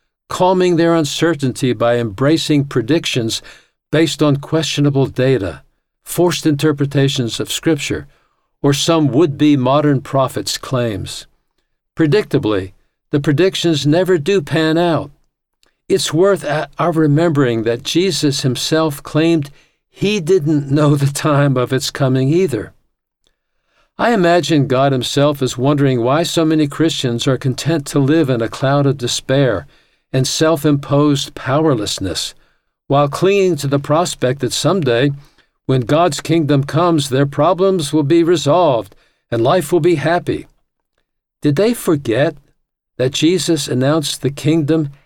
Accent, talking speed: American, 125 wpm